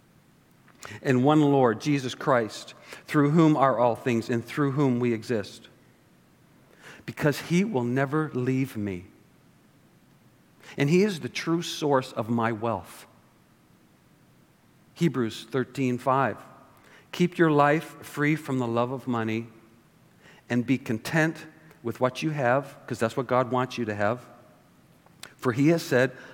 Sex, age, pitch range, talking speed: male, 50-69, 120-150 Hz, 140 wpm